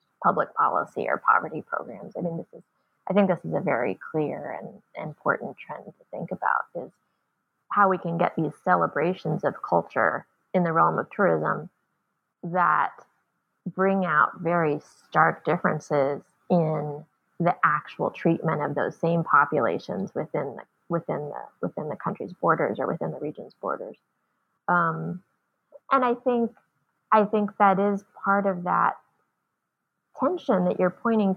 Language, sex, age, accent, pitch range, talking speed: English, female, 20-39, American, 165-195 Hz, 150 wpm